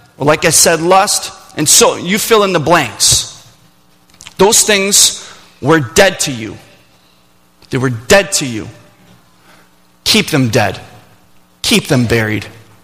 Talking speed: 130 wpm